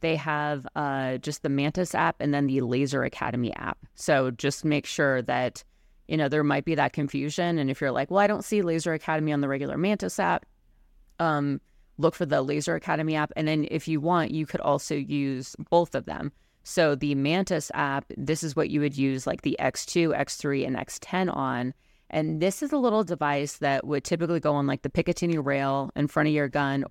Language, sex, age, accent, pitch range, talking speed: English, female, 30-49, American, 140-160 Hz, 215 wpm